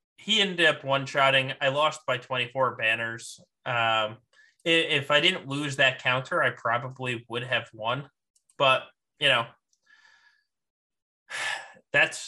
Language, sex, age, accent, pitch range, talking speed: English, male, 20-39, American, 125-155 Hz, 125 wpm